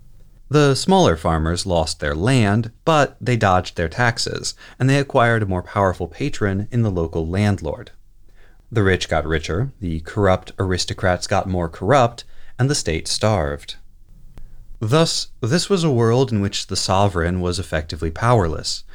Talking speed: 150 wpm